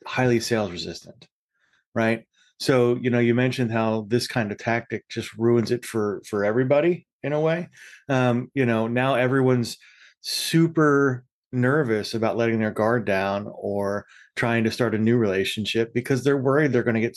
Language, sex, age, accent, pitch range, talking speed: English, male, 30-49, American, 110-130 Hz, 170 wpm